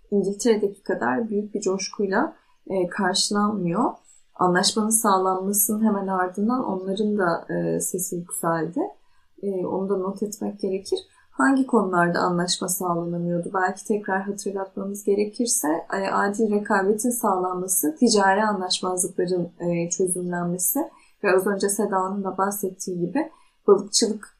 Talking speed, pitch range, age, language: 110 wpm, 180-215 Hz, 10-29, Turkish